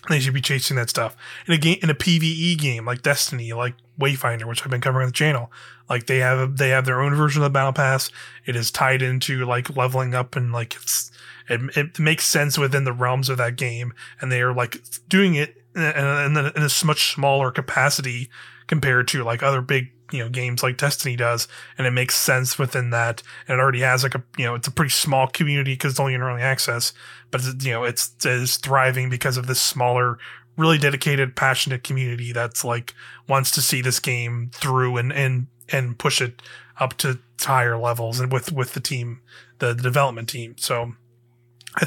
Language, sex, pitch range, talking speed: English, male, 125-140 Hz, 210 wpm